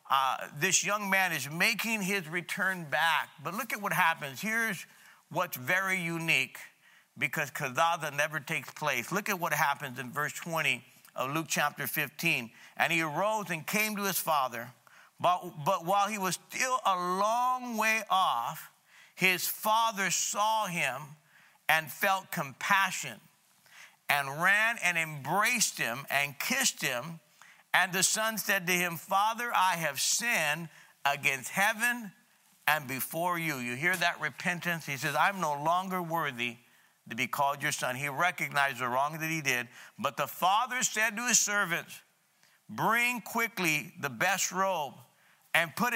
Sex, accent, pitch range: male, American, 150-205 Hz